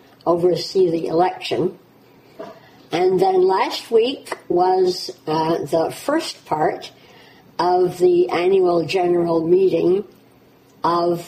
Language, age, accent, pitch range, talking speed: English, 60-79, American, 155-185 Hz, 95 wpm